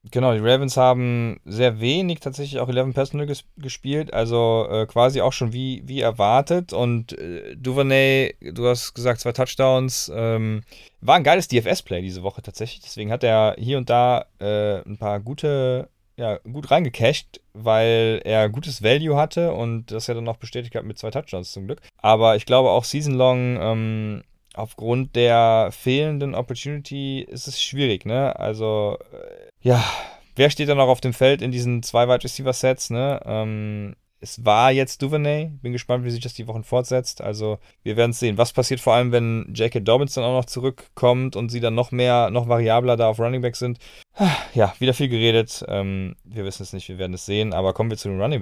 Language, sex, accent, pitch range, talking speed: German, male, German, 110-130 Hz, 190 wpm